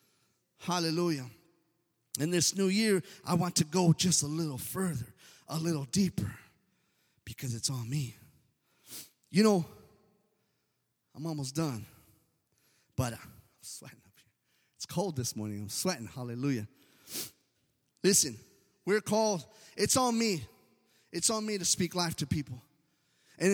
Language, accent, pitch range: English, American, 165-250 Hz